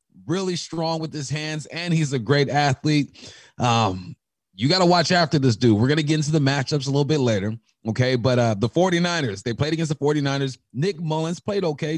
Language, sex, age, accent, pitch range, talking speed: English, male, 30-49, American, 115-155 Hz, 215 wpm